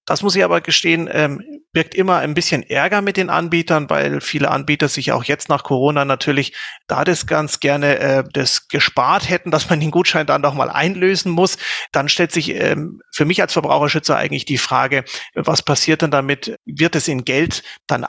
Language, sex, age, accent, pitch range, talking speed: German, male, 40-59, German, 135-165 Hz, 200 wpm